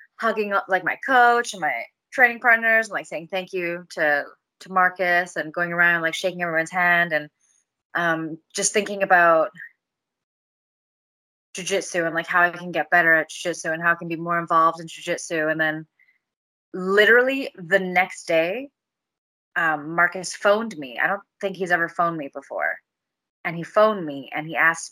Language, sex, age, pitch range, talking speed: English, female, 20-39, 165-200 Hz, 175 wpm